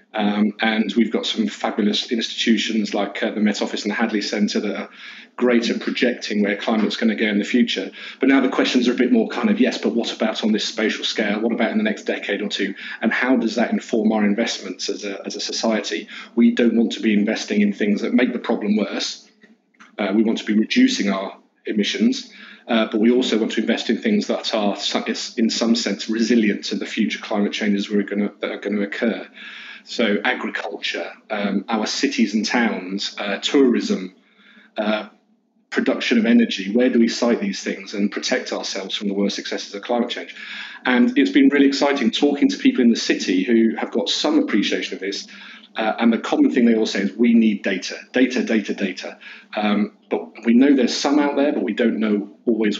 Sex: male